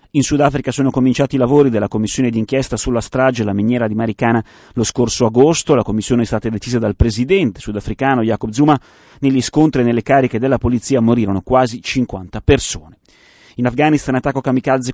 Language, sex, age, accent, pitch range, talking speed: Italian, male, 30-49, native, 115-135 Hz, 175 wpm